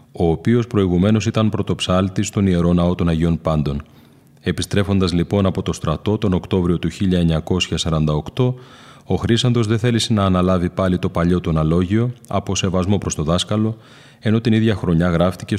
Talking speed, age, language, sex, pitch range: 160 wpm, 30-49, Greek, male, 90-110 Hz